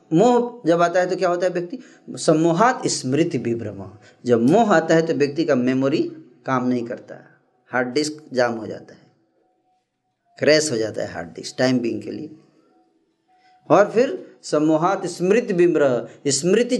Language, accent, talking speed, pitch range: Hindi, native, 160 wpm, 140-215 Hz